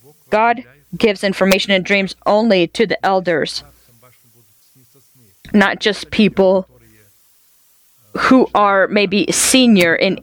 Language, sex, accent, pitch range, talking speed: English, female, American, 170-210 Hz, 100 wpm